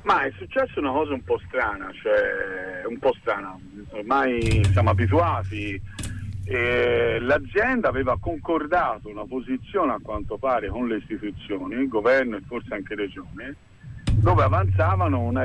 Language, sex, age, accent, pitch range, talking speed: Italian, male, 50-69, native, 105-150 Hz, 140 wpm